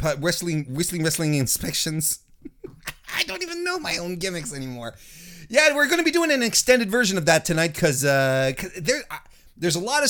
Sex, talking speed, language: male, 190 wpm, English